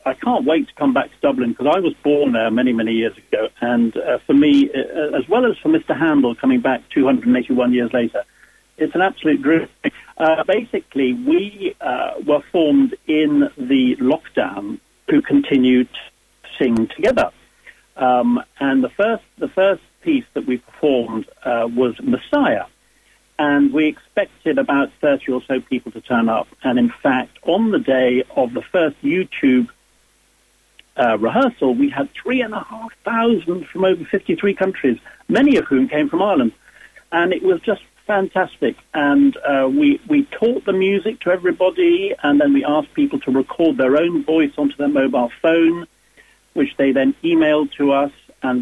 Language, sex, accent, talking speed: English, male, British, 170 wpm